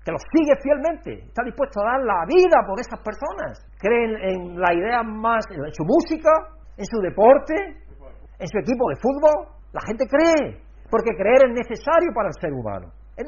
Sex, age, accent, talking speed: male, 60-79, Spanish, 185 wpm